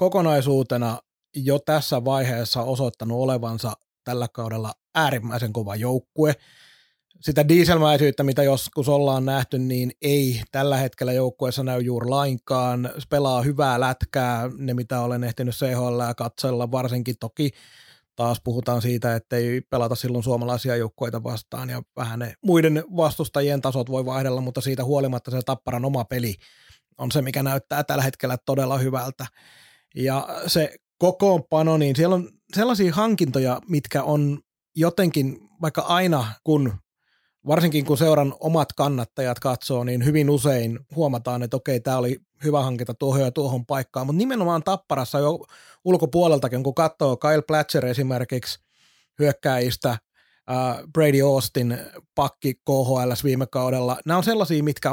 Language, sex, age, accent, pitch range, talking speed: Finnish, male, 30-49, native, 125-150 Hz, 135 wpm